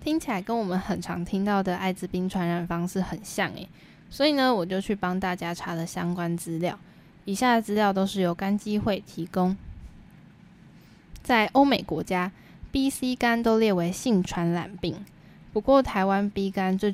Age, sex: 10-29, female